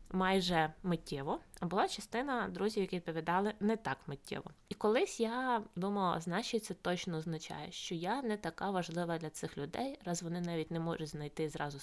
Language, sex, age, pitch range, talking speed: Ukrainian, female, 20-39, 170-205 Hz, 170 wpm